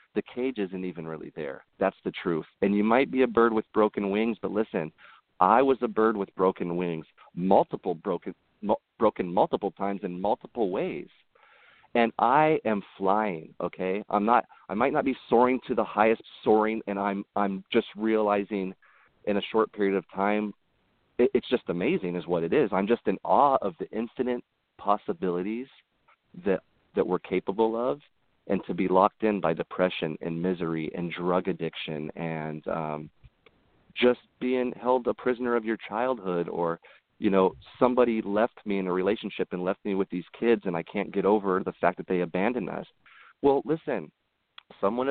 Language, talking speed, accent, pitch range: English, 180 wpm, American, 90-120 Hz